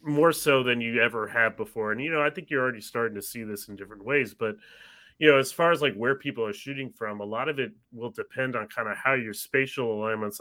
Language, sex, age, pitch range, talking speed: English, male, 30-49, 105-135 Hz, 265 wpm